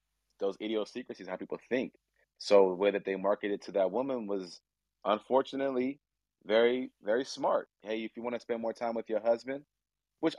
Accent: American